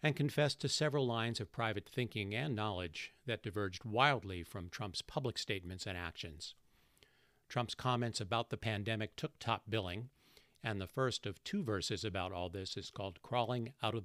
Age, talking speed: 50-69, 175 wpm